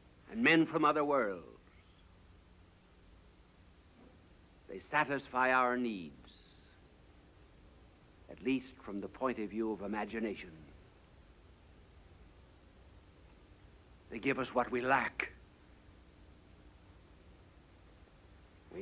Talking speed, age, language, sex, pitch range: 80 wpm, 60-79, English, male, 80-120 Hz